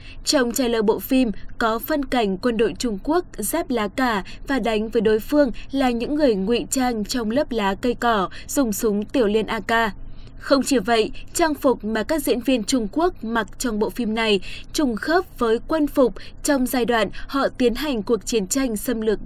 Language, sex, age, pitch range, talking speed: Vietnamese, female, 20-39, 215-265 Hz, 205 wpm